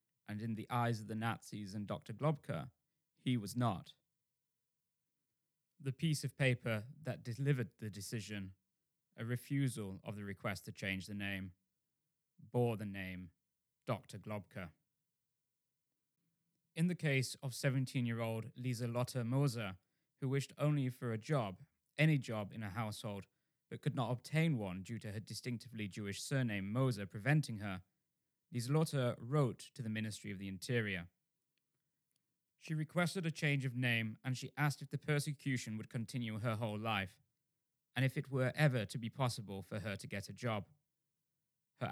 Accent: British